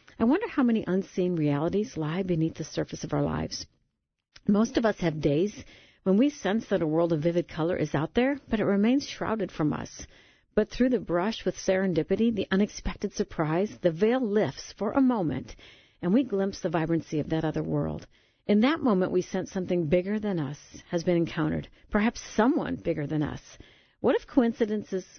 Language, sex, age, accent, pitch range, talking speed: English, female, 50-69, American, 160-210 Hz, 190 wpm